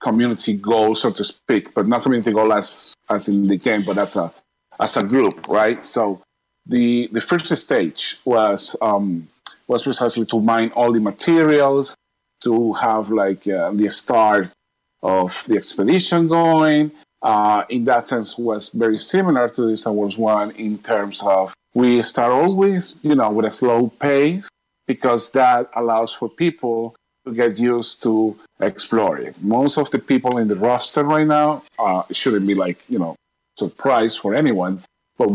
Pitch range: 110-140 Hz